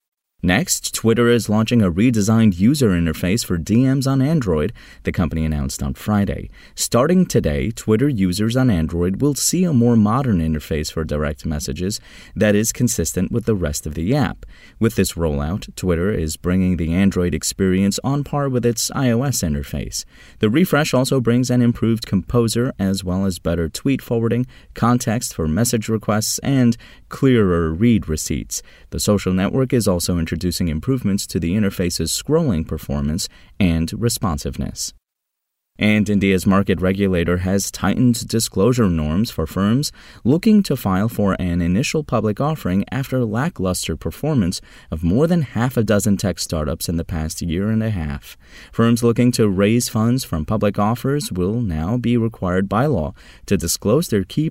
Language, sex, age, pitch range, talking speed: English, male, 30-49, 85-120 Hz, 160 wpm